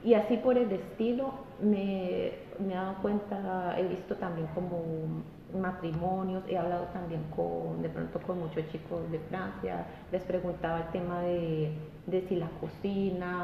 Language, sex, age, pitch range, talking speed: Spanish, female, 30-49, 170-200 Hz, 155 wpm